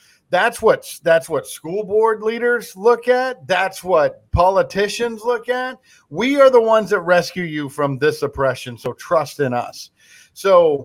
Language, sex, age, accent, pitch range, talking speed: English, male, 50-69, American, 145-200 Hz, 160 wpm